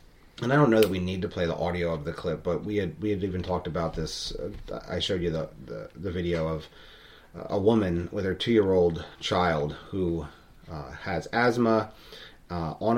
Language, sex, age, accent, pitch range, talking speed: English, male, 30-49, American, 90-120 Hz, 210 wpm